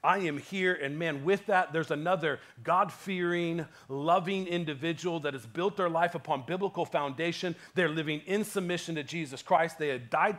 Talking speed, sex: 175 wpm, male